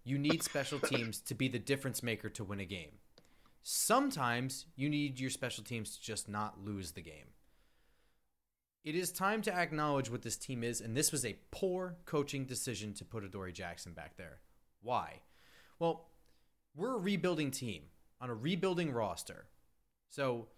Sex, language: male, English